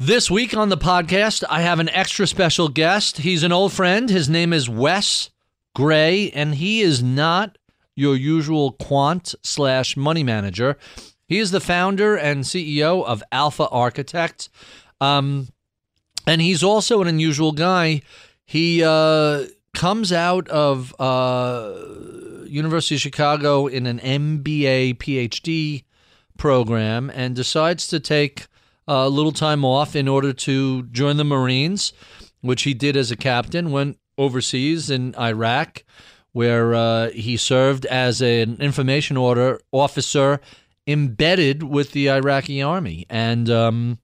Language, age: English, 40-59